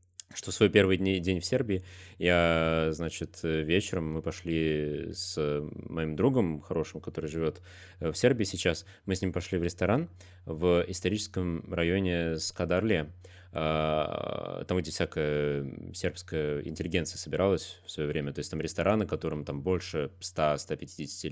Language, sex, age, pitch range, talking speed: Russian, male, 20-39, 80-100 Hz, 140 wpm